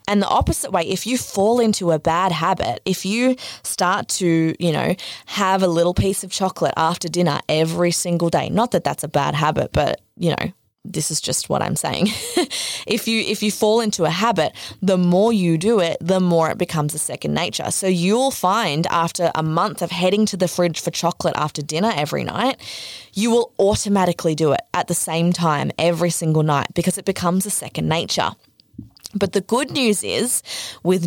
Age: 20-39